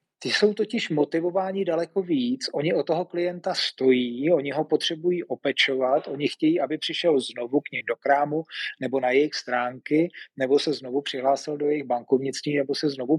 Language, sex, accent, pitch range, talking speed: Czech, male, native, 130-165 Hz, 175 wpm